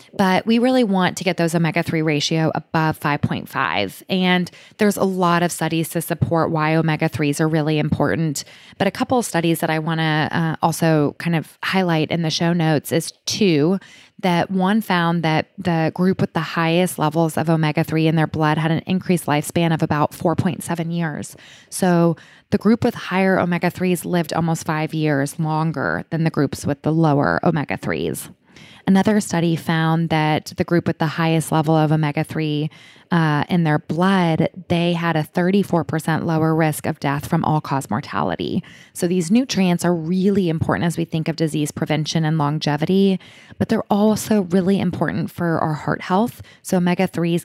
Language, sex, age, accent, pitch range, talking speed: English, female, 20-39, American, 160-185 Hz, 175 wpm